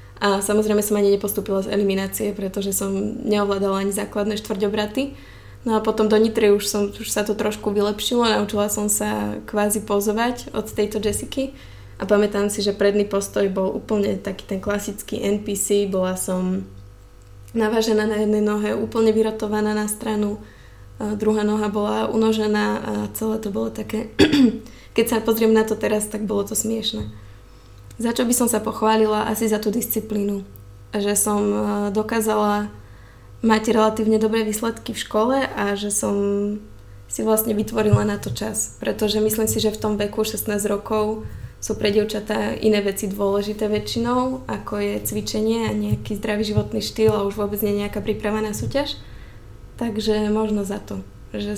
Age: 20-39